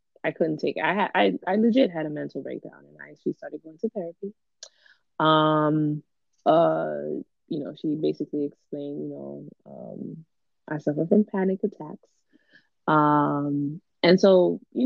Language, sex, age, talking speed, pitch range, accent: English, female, 20-39, 160 wpm, 150-205 Hz, American